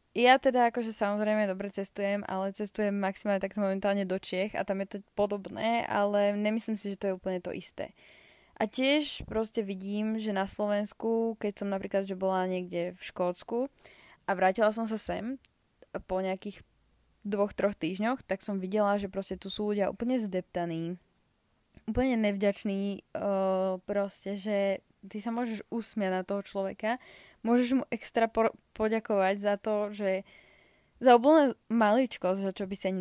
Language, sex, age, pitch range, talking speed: Slovak, female, 20-39, 190-225 Hz, 160 wpm